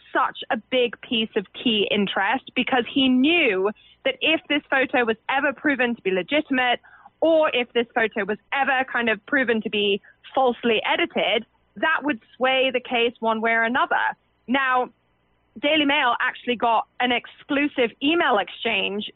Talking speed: 160 wpm